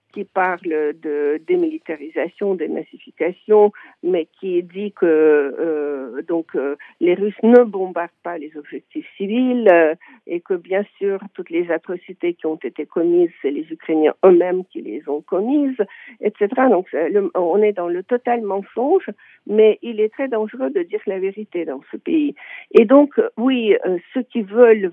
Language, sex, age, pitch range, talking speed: French, female, 50-69, 175-250 Hz, 165 wpm